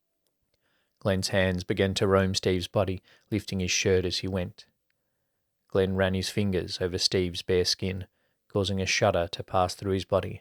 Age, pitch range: 20-39, 95-100 Hz